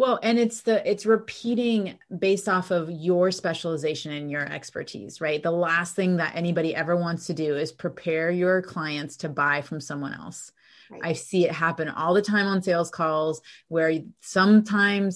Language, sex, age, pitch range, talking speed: English, female, 30-49, 160-200 Hz, 180 wpm